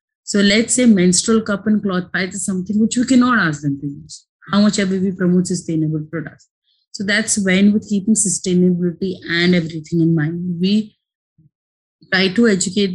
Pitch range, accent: 165-200 Hz, Indian